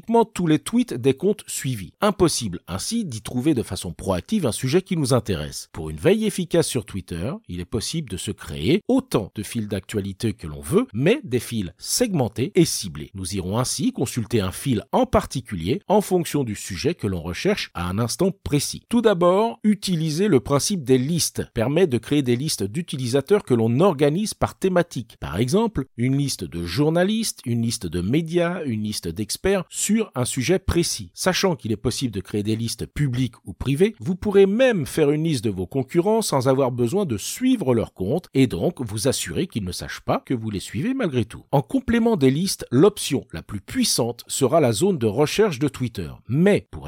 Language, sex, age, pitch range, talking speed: French, male, 50-69, 110-175 Hz, 195 wpm